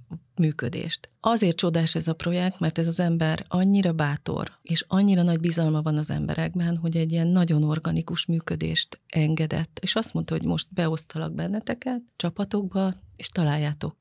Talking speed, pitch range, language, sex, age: 155 wpm, 155-175 Hz, Hungarian, female, 30-49